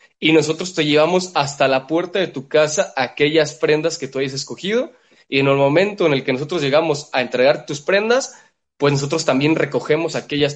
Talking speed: 195 wpm